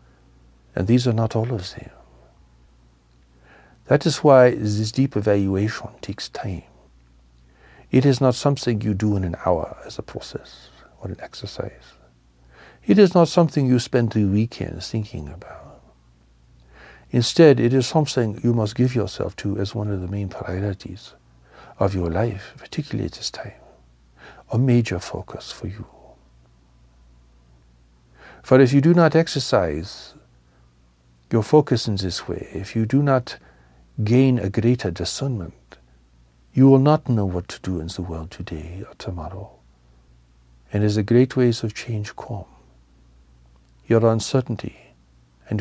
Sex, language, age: male, English, 60-79